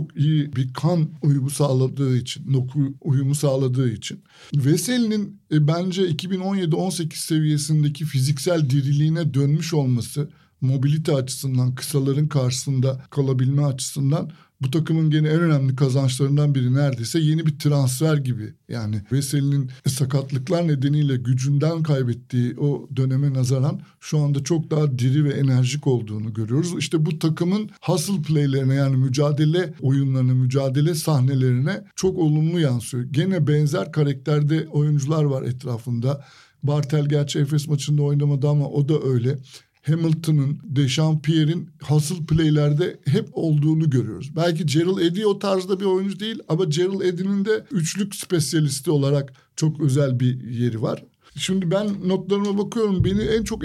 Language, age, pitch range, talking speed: Turkish, 60-79, 140-170 Hz, 130 wpm